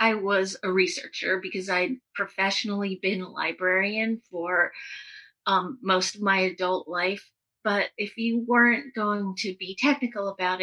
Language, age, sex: English, 30-49, female